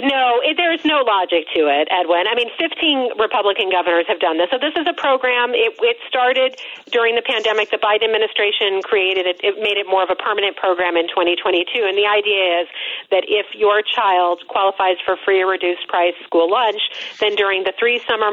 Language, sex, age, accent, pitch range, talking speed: English, female, 40-59, American, 180-240 Hz, 205 wpm